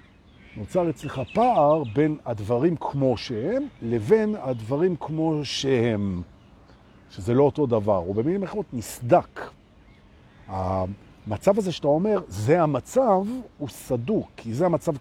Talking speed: 120 wpm